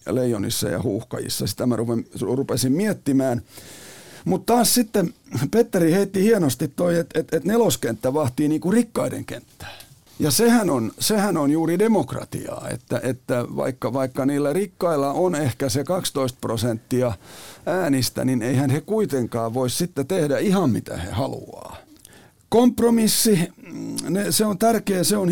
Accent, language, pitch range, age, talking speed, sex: native, Finnish, 125-200 Hz, 50-69, 140 wpm, male